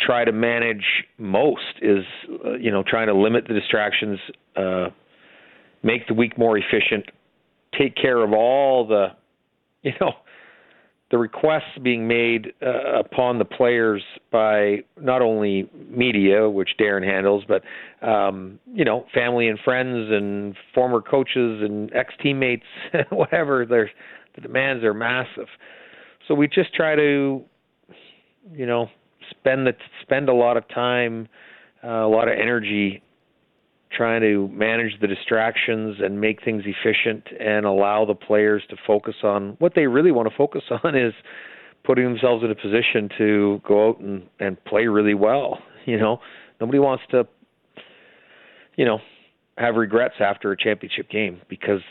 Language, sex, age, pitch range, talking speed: English, male, 40-59, 105-125 Hz, 150 wpm